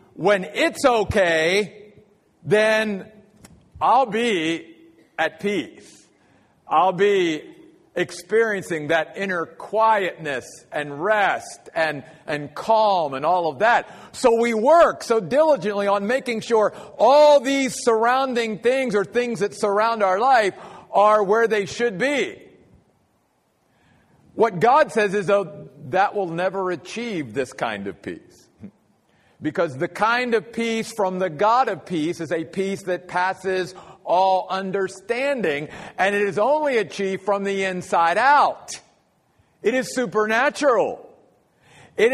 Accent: American